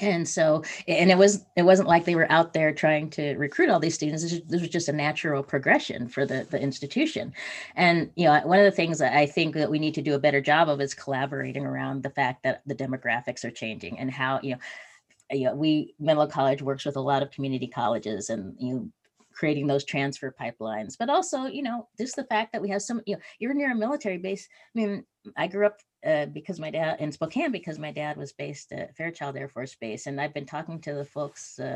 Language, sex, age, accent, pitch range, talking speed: English, female, 30-49, American, 140-170 Hz, 240 wpm